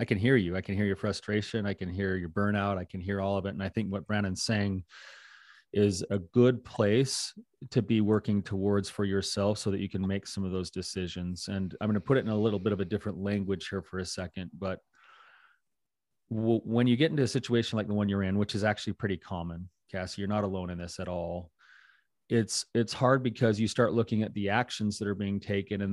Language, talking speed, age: English, 240 wpm, 30-49